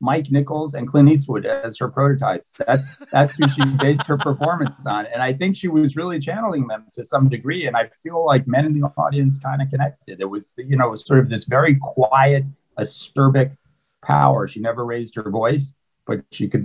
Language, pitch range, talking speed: English, 120-145 Hz, 215 wpm